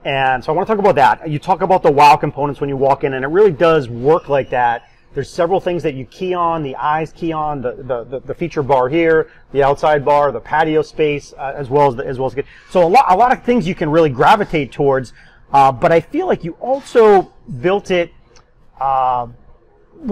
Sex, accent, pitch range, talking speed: male, American, 140-175 Hz, 235 wpm